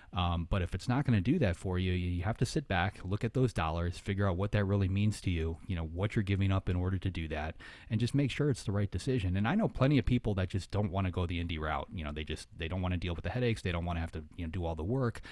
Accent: American